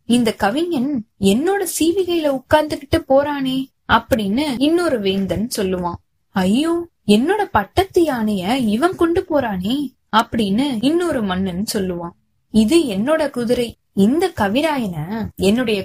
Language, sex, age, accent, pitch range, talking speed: Tamil, female, 20-39, native, 200-285 Hz, 100 wpm